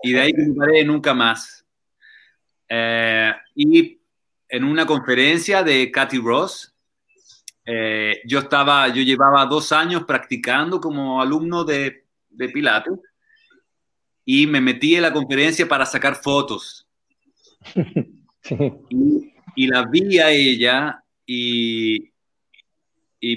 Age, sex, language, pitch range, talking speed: 30-49, male, Portuguese, 125-160 Hz, 115 wpm